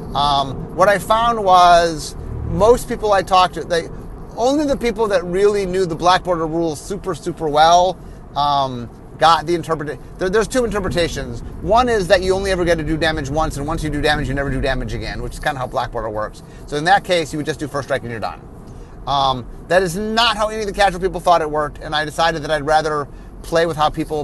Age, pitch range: 30-49, 130-175 Hz